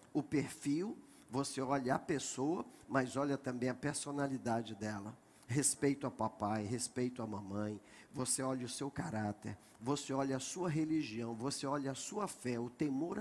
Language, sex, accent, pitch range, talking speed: Portuguese, male, Brazilian, 120-140 Hz, 160 wpm